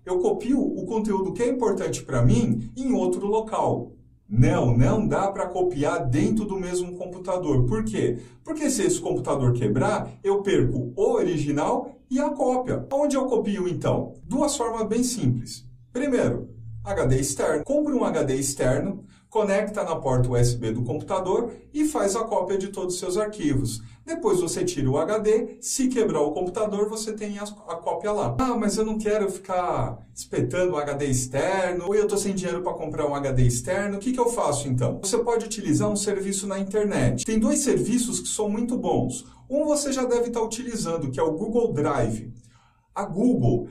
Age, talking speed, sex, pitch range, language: 50-69, 180 wpm, male, 145-225 Hz, Portuguese